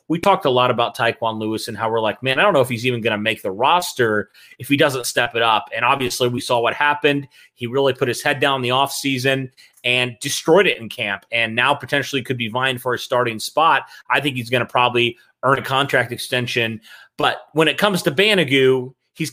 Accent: American